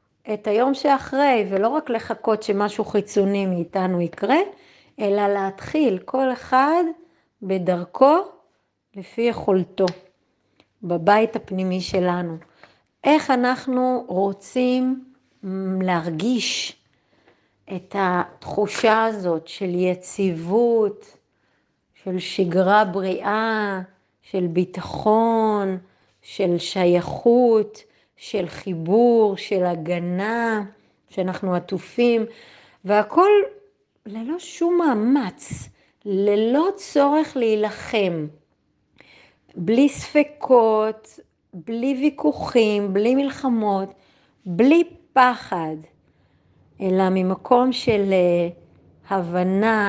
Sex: female